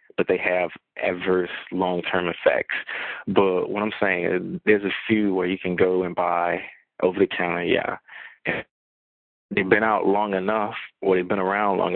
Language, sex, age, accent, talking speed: English, male, 20-39, American, 165 wpm